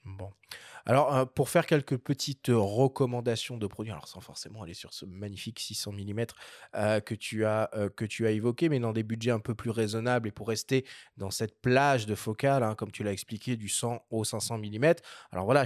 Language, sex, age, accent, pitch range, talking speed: French, male, 20-39, French, 110-145 Hz, 215 wpm